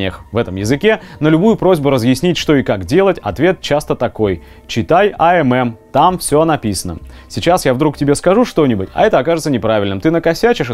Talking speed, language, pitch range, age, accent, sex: 175 wpm, Russian, 110-160 Hz, 30-49, native, male